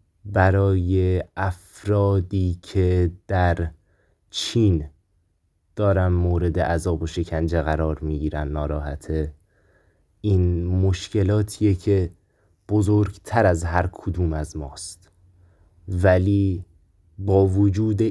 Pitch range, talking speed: 80-100 Hz, 85 wpm